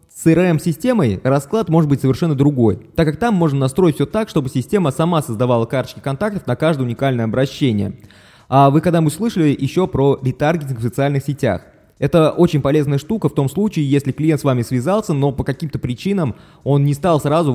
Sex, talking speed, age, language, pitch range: male, 190 wpm, 20-39, Russian, 130-165 Hz